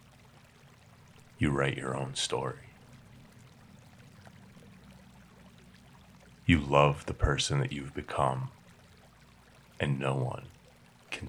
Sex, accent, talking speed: male, American, 85 wpm